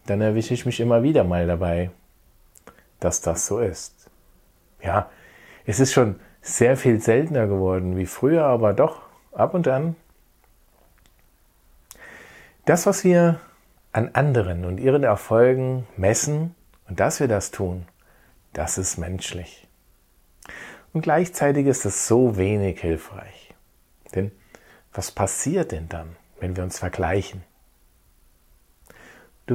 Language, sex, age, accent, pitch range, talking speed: German, male, 40-59, German, 85-130 Hz, 125 wpm